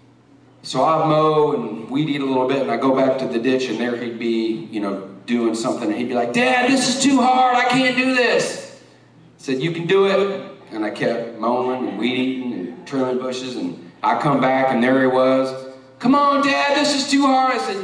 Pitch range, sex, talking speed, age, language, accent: 135-190 Hz, male, 240 wpm, 40-59, English, American